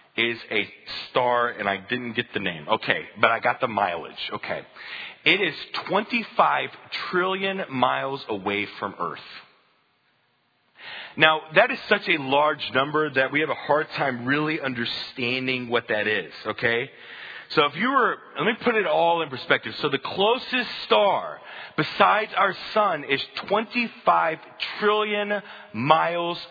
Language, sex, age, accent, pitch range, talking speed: English, male, 40-59, American, 120-195 Hz, 145 wpm